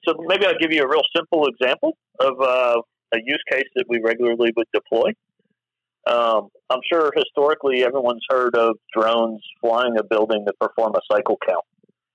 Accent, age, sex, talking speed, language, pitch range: American, 40-59, male, 175 wpm, English, 110-135 Hz